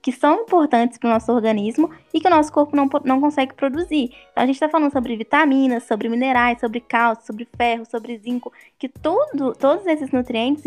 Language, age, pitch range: Portuguese, 10-29, 240-300 Hz